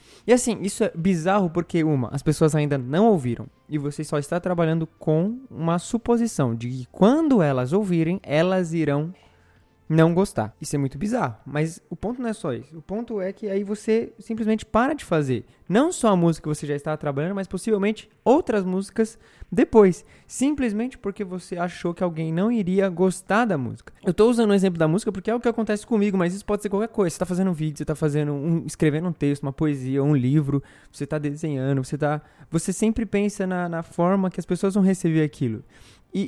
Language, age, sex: Portuguese, 20-39, male